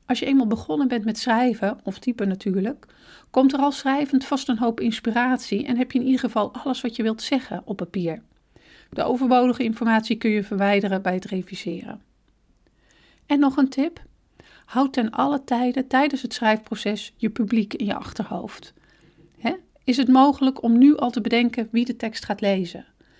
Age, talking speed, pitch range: 40-59, 180 wpm, 200-255 Hz